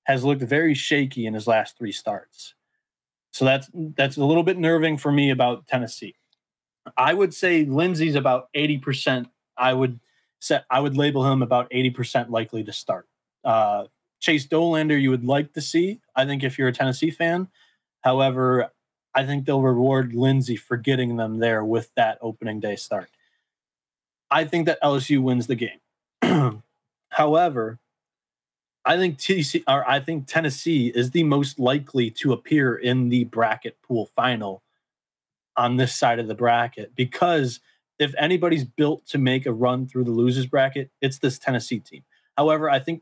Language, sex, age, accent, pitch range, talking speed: English, male, 20-39, American, 125-155 Hz, 165 wpm